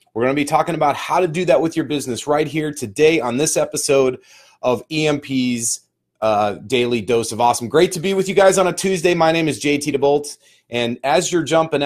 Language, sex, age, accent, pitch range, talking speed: English, male, 30-49, American, 125-150 Hz, 220 wpm